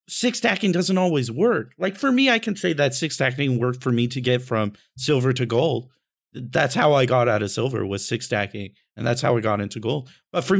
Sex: male